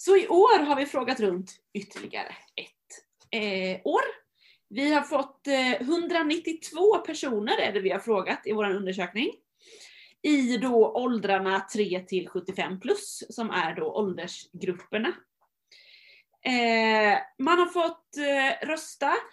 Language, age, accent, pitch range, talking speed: Swedish, 30-49, native, 200-305 Hz, 120 wpm